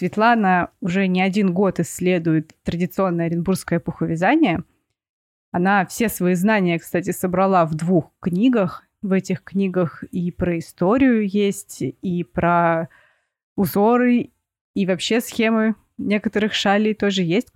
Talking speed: 120 wpm